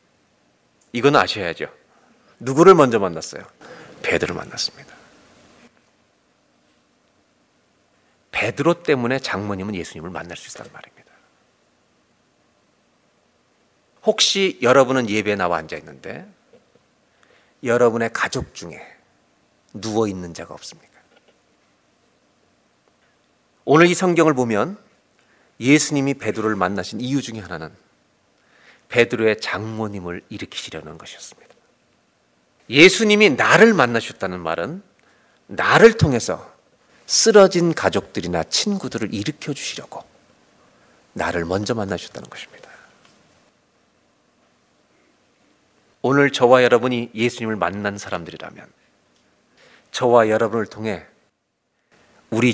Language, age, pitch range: Korean, 40-59, 95-140 Hz